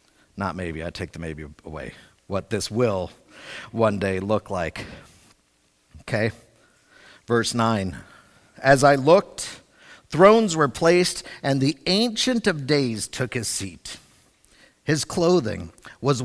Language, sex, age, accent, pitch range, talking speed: English, male, 50-69, American, 120-195 Hz, 125 wpm